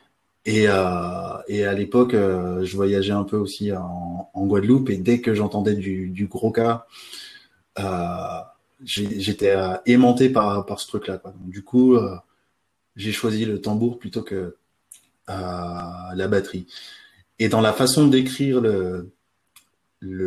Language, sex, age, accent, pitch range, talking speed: French, male, 20-39, French, 95-120 Hz, 150 wpm